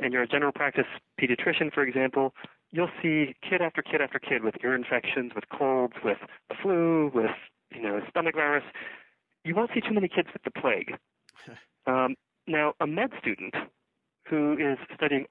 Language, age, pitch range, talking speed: English, 40-59, 125-155 Hz, 175 wpm